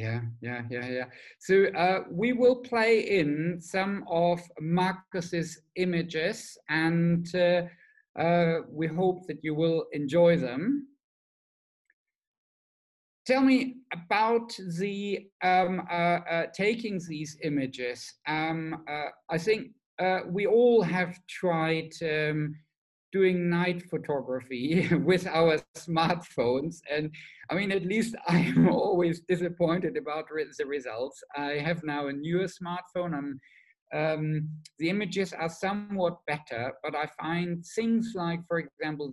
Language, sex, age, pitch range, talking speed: English, male, 50-69, 155-190 Hz, 125 wpm